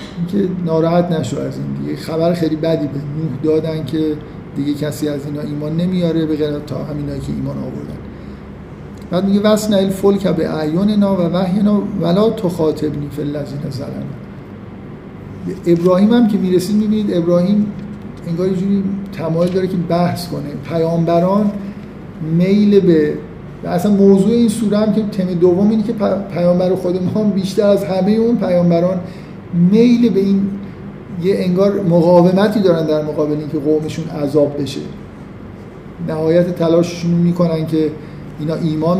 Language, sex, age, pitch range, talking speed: Persian, male, 50-69, 155-195 Hz, 145 wpm